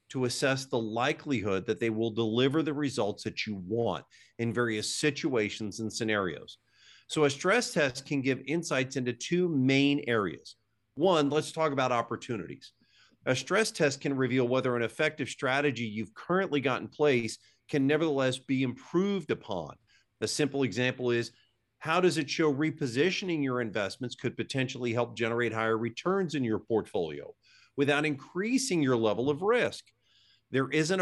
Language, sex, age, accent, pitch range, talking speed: English, male, 50-69, American, 115-150 Hz, 155 wpm